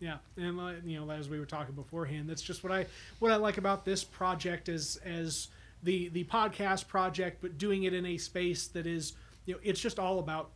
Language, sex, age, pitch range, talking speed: English, male, 30-49, 155-185 Hz, 225 wpm